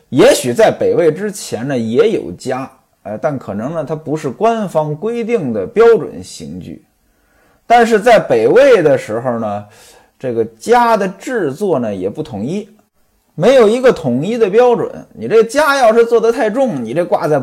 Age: 20-39